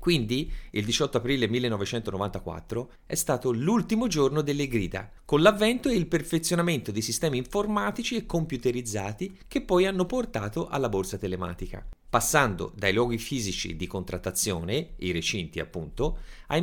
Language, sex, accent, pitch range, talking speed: Italian, male, native, 100-155 Hz, 135 wpm